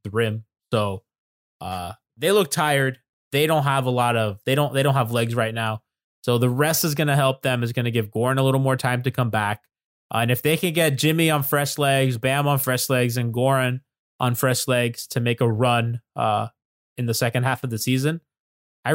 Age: 20-39